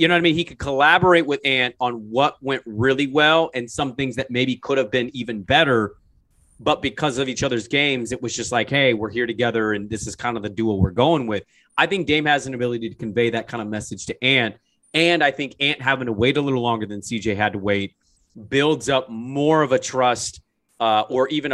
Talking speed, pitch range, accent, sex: 240 wpm, 115-150 Hz, American, male